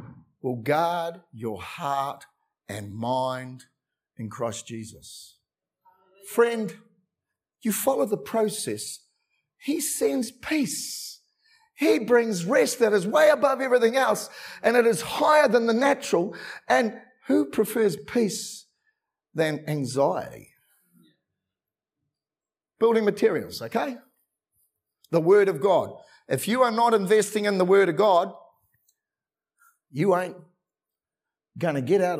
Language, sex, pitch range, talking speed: English, male, 150-235 Hz, 115 wpm